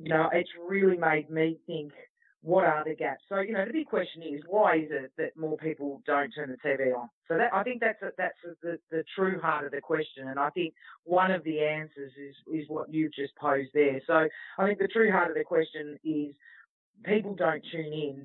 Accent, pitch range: Australian, 145-180 Hz